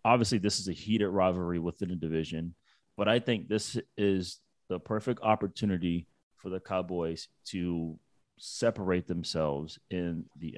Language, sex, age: English, male, 30-49